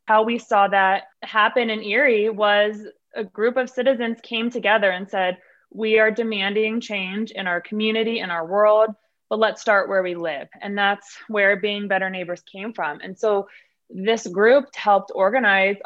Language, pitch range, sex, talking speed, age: English, 195-230 Hz, female, 175 wpm, 20-39